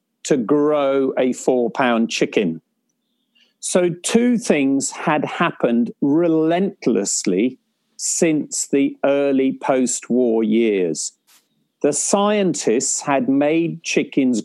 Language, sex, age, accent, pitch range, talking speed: English, male, 50-69, British, 135-195 Hz, 95 wpm